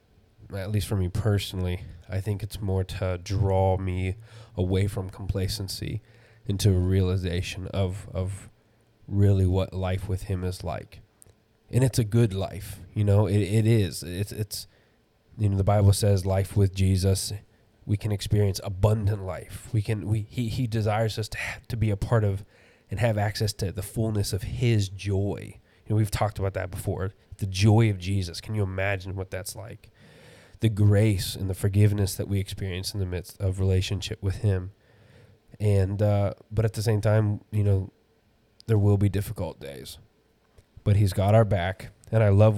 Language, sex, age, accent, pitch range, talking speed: English, male, 20-39, American, 95-110 Hz, 180 wpm